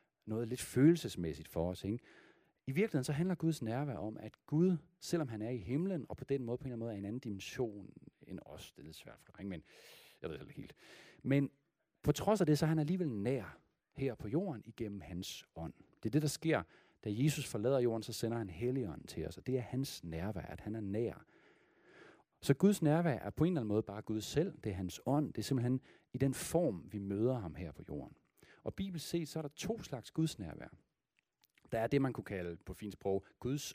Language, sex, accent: Danish, male, native